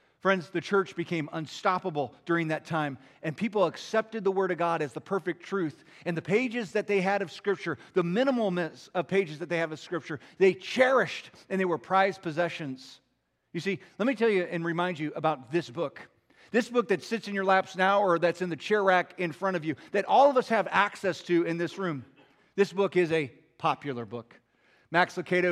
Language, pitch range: English, 155-195 Hz